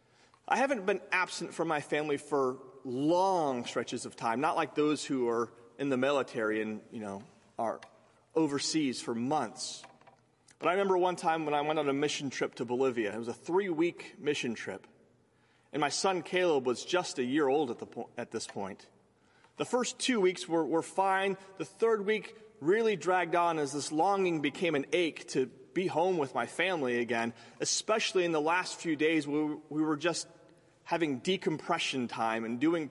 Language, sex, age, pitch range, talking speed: English, male, 30-49, 135-180 Hz, 190 wpm